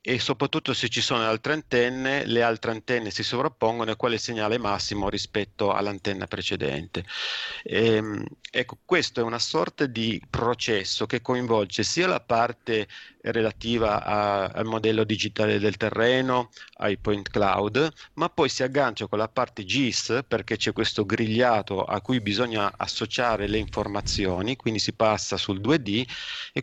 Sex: male